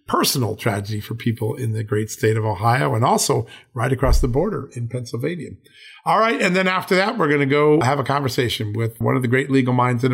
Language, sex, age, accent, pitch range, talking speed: English, male, 40-59, American, 120-145 Hz, 230 wpm